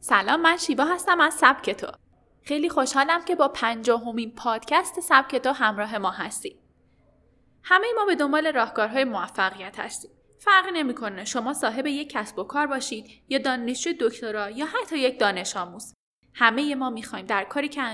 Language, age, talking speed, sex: Persian, 10-29, 165 wpm, female